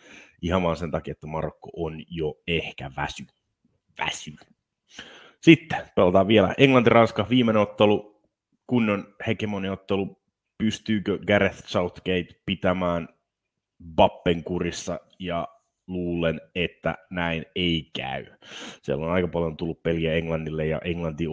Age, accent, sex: 30-49, native, male